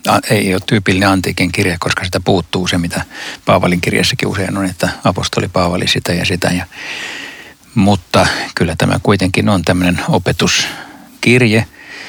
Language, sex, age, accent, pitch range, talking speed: Finnish, male, 60-79, native, 90-105 Hz, 135 wpm